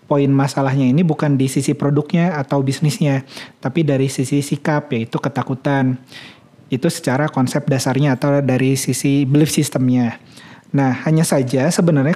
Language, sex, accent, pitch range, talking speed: Indonesian, male, native, 135-165 Hz, 140 wpm